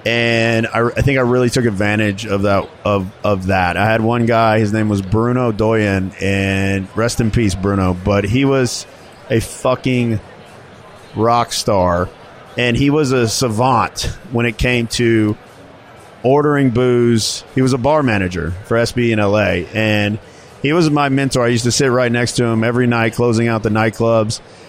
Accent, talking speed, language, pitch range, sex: American, 175 wpm, English, 110-130 Hz, male